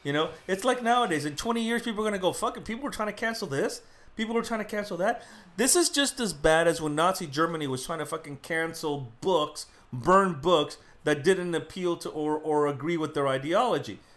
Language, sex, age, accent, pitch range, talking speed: English, male, 40-59, American, 140-190 Hz, 230 wpm